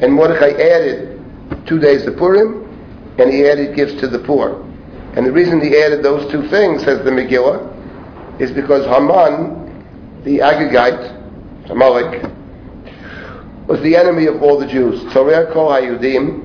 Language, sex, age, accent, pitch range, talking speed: English, male, 50-69, American, 130-155 Hz, 150 wpm